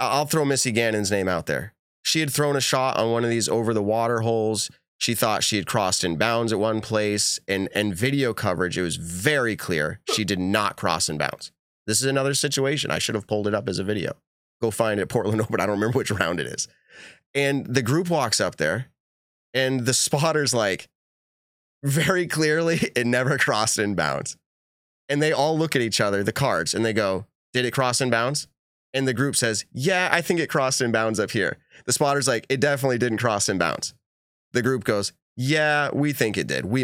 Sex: male